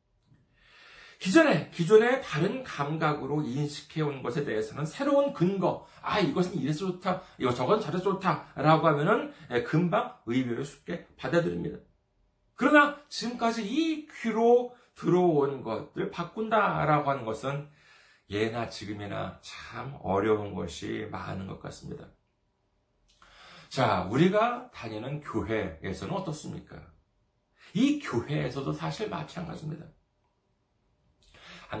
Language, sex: Korean, male